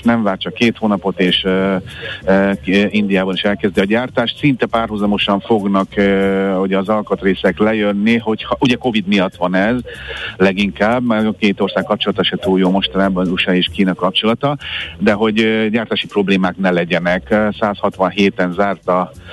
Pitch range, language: 100-110 Hz, Hungarian